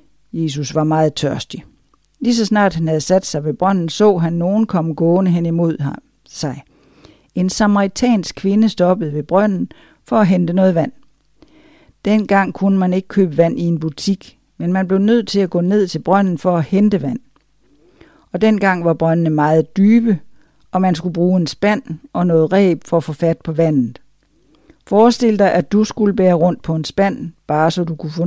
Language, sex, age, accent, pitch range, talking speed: Danish, female, 60-79, native, 155-195 Hz, 195 wpm